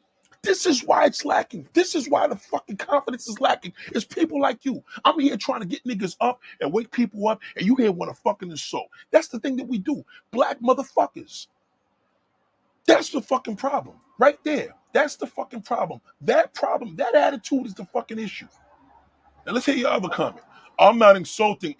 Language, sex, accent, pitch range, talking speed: English, male, American, 220-290 Hz, 195 wpm